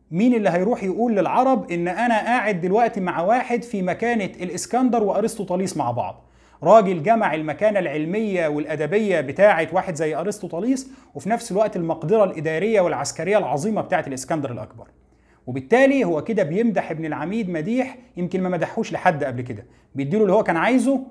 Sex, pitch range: male, 145-205 Hz